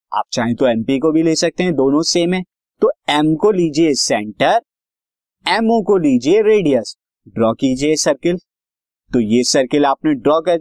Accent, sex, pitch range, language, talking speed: native, male, 135-200 Hz, Hindi, 170 wpm